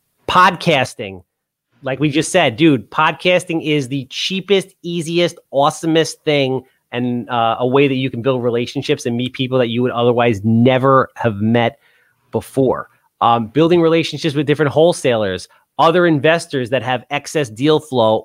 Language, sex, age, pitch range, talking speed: English, male, 30-49, 130-165 Hz, 150 wpm